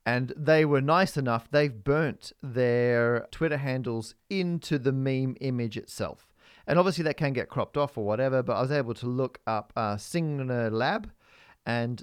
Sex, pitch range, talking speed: male, 115-150 Hz, 175 wpm